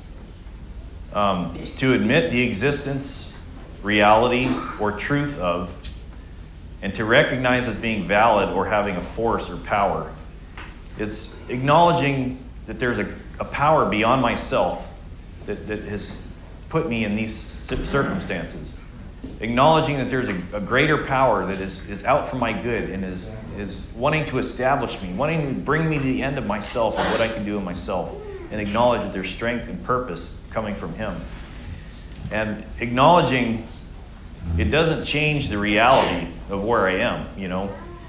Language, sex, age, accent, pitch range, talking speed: English, male, 30-49, American, 85-130 Hz, 155 wpm